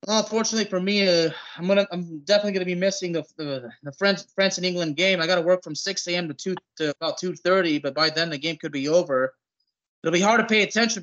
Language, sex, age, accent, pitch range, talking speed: English, male, 20-39, American, 160-205 Hz, 245 wpm